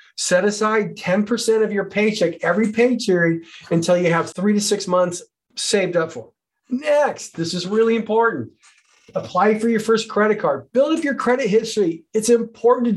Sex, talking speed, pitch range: male, 170 wpm, 175-230 Hz